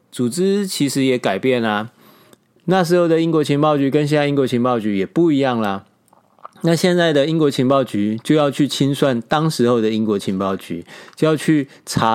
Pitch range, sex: 125-165 Hz, male